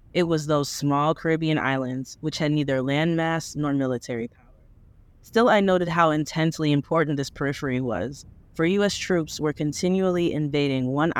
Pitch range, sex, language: 130-170 Hz, female, English